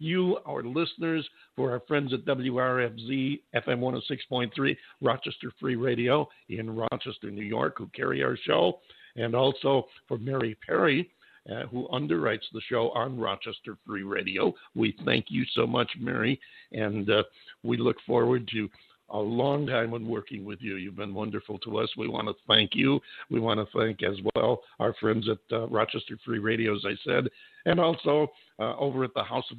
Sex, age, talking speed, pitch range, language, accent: male, 60-79, 180 wpm, 110-140 Hz, English, American